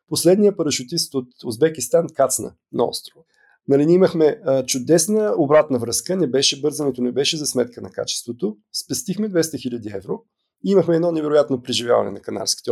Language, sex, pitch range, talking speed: Bulgarian, male, 130-180 Hz, 150 wpm